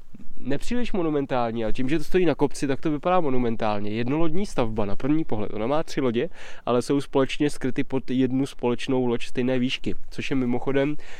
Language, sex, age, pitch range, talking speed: Czech, male, 20-39, 115-140 Hz, 190 wpm